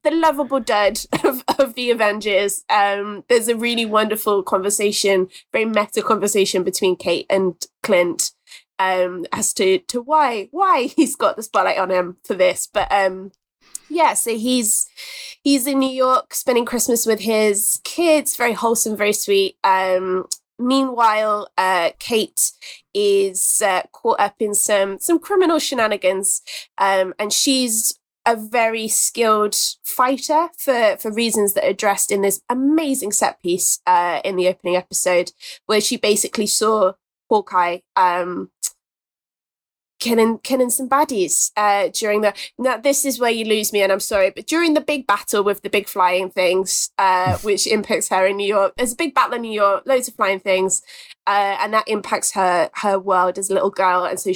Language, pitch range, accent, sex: English, 195-260 Hz, British, female